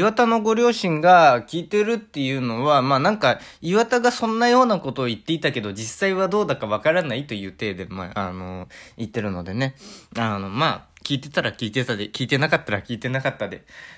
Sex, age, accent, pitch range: male, 20-39, native, 110-150 Hz